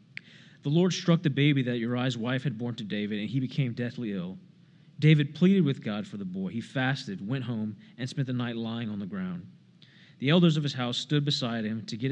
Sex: male